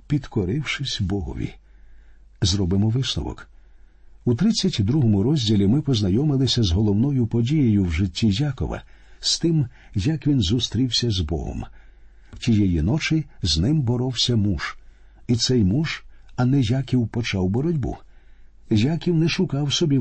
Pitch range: 100-130 Hz